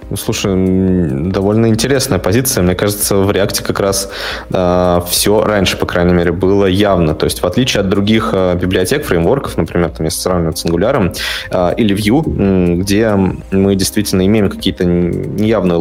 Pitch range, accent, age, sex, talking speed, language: 90-105 Hz, native, 20-39, male, 165 wpm, Russian